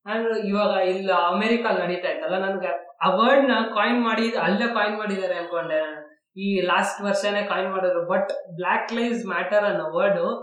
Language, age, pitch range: Kannada, 20-39, 185-240 Hz